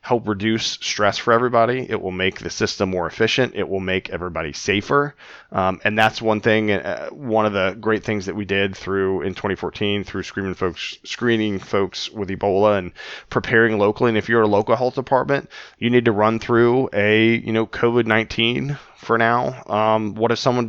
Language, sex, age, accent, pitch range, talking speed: English, male, 20-39, American, 100-120 Hz, 190 wpm